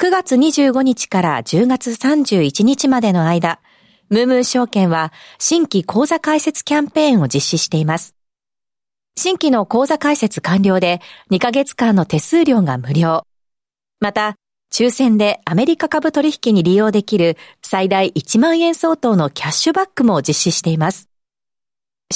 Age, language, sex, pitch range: 40-59, Japanese, female, 175-265 Hz